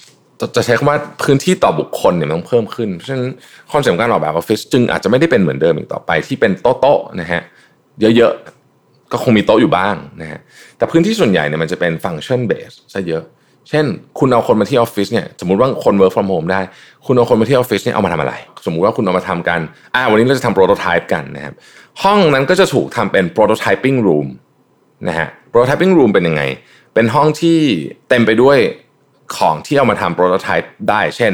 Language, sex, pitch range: Thai, male, 95-145 Hz